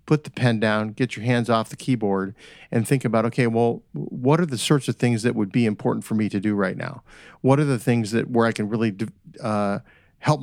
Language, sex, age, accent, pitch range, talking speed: English, male, 50-69, American, 115-155 Hz, 240 wpm